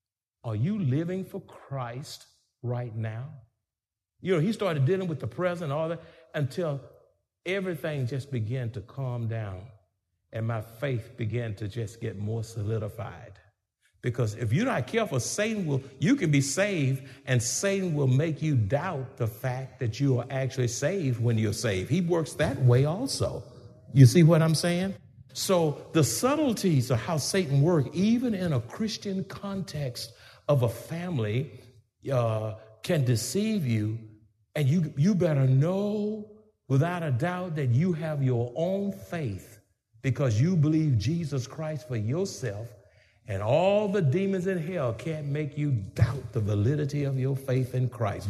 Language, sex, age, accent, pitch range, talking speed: English, male, 50-69, American, 115-165 Hz, 160 wpm